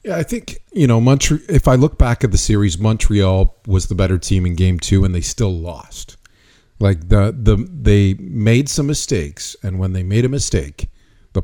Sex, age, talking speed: male, 40-59, 205 wpm